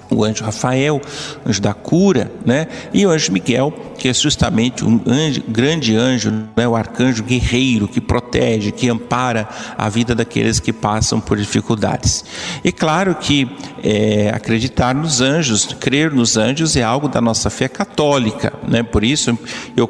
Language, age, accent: Portuguese, 50-69, Brazilian